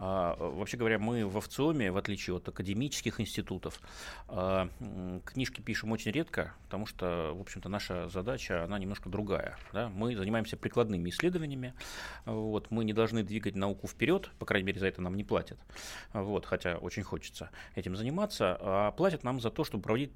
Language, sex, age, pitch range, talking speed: Russian, male, 30-49, 95-120 Hz, 155 wpm